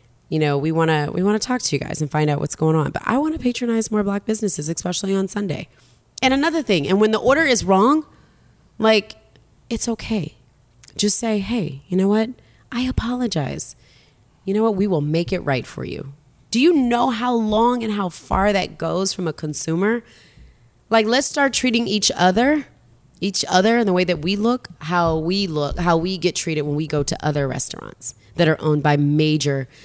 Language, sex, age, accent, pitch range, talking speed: English, female, 30-49, American, 150-215 Hz, 205 wpm